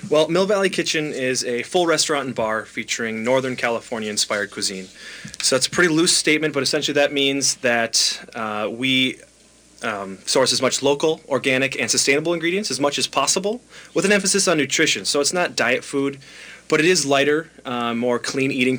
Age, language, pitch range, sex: 20-39, English, 115-145 Hz, male